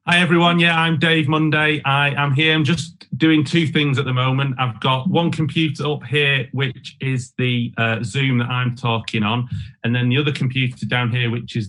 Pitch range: 115-140 Hz